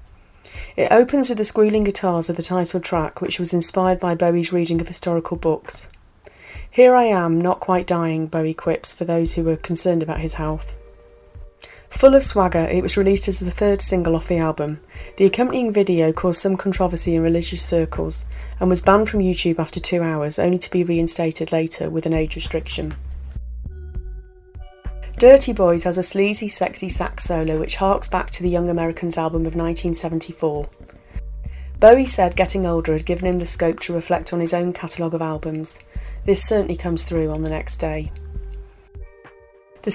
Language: English